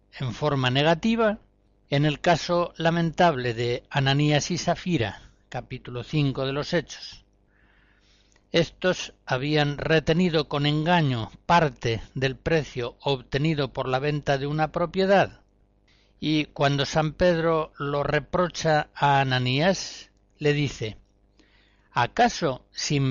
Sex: male